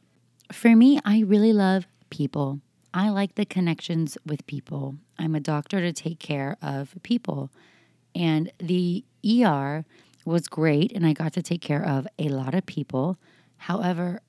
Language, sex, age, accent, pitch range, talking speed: English, female, 30-49, American, 145-185 Hz, 155 wpm